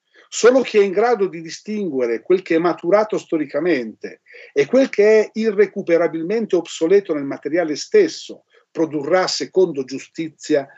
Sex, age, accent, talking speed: male, 50-69, native, 135 wpm